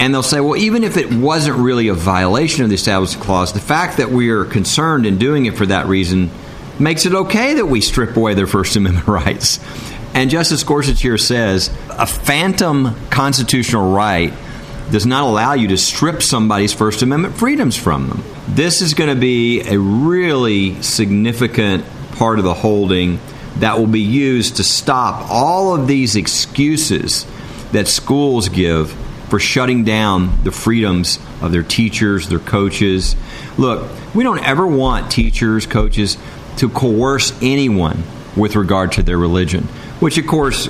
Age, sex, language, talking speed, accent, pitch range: 50-69, male, English, 165 wpm, American, 100-135 Hz